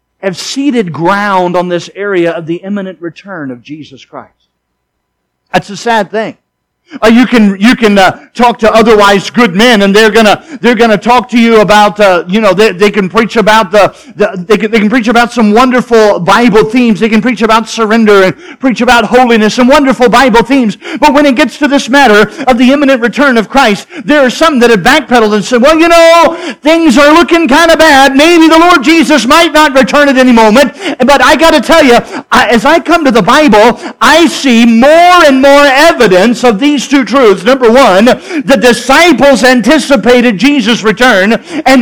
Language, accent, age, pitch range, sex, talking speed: English, American, 50-69, 210-285 Hz, male, 200 wpm